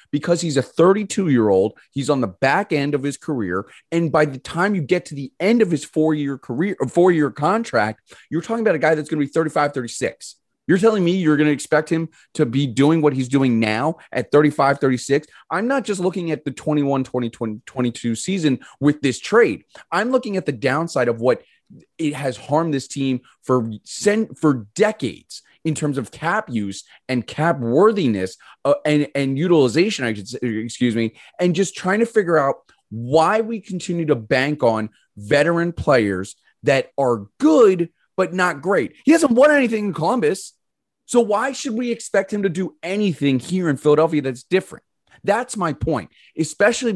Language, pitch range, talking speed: English, 135-185 Hz, 195 wpm